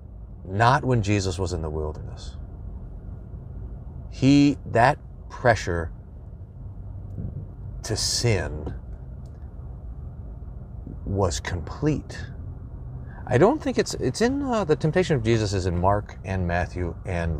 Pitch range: 85-115 Hz